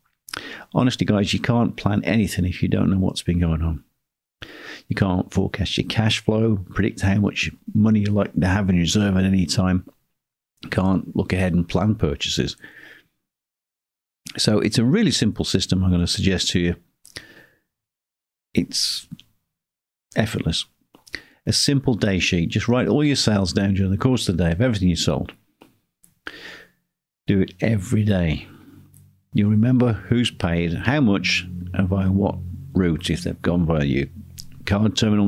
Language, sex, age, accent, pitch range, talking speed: English, male, 50-69, British, 90-115 Hz, 165 wpm